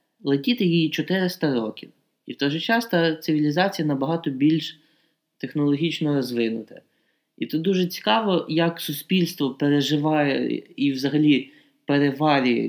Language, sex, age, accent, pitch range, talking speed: Ukrainian, male, 20-39, native, 145-175 Hz, 120 wpm